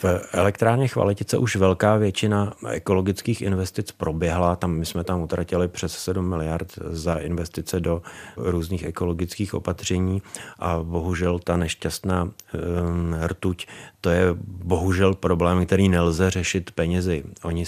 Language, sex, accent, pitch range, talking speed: Czech, male, native, 85-95 Hz, 130 wpm